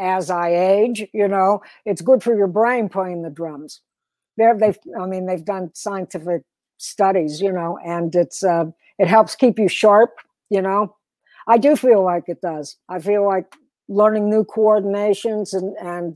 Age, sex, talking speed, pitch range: 60-79, female, 170 wpm, 180-215 Hz